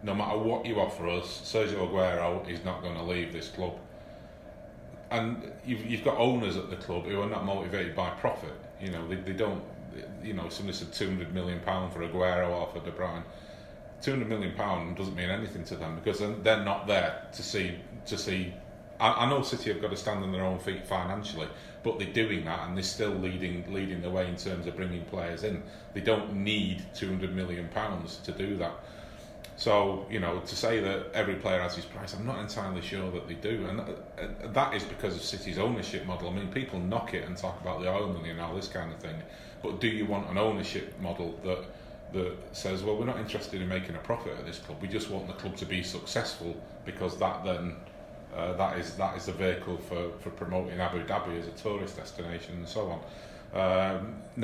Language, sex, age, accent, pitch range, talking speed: English, male, 30-49, British, 90-100 Hz, 220 wpm